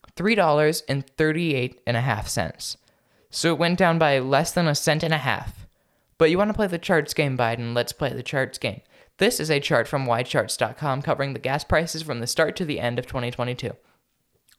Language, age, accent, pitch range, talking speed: English, 10-29, American, 125-160 Hz, 235 wpm